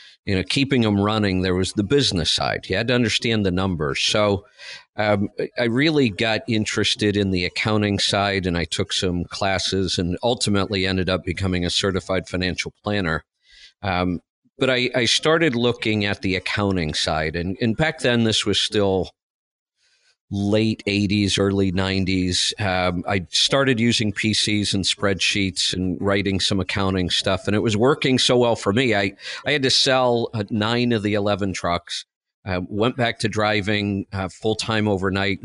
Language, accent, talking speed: English, American, 170 wpm